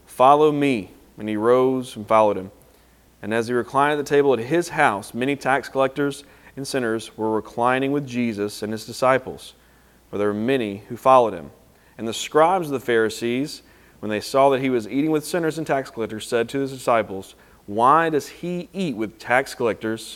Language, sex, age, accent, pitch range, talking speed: English, male, 30-49, American, 110-135 Hz, 195 wpm